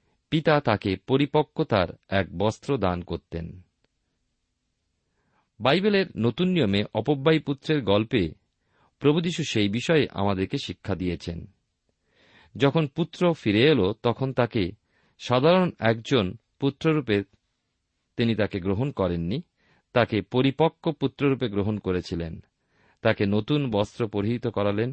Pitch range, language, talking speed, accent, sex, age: 95-130 Hz, Bengali, 100 wpm, native, male, 50-69